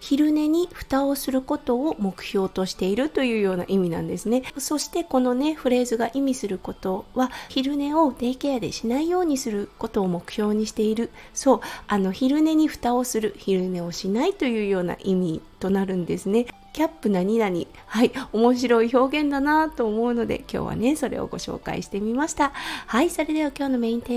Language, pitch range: Japanese, 200-295 Hz